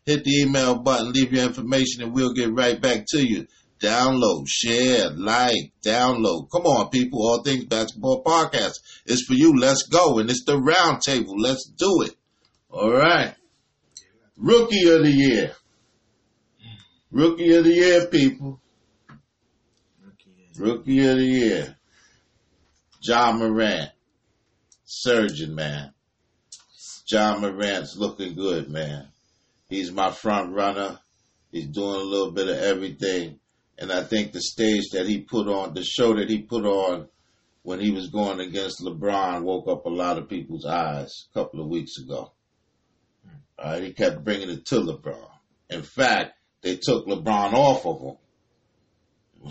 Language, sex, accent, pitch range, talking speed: English, male, American, 95-130 Hz, 145 wpm